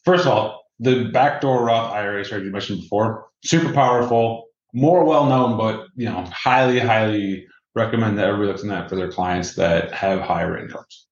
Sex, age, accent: male, 20-39, American